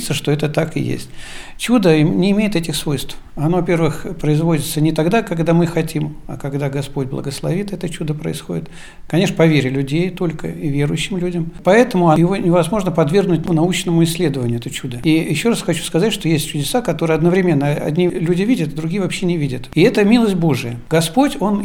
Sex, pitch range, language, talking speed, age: male, 150-185 Hz, Russian, 175 wpm, 60-79